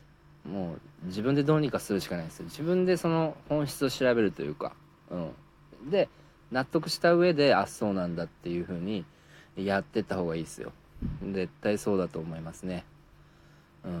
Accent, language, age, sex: native, Japanese, 40-59, male